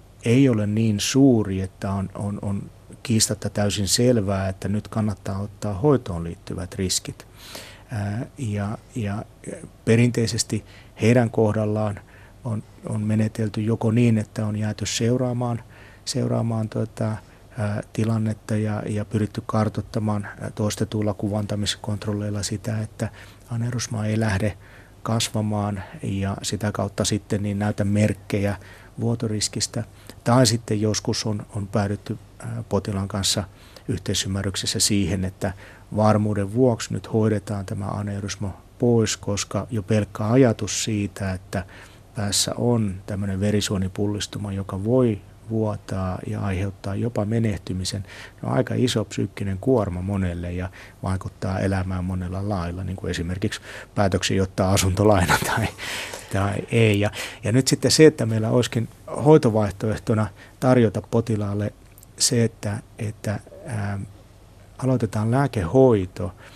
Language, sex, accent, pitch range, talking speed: Finnish, male, native, 100-115 Hz, 110 wpm